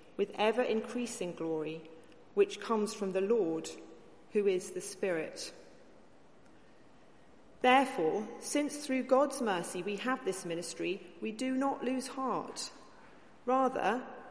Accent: British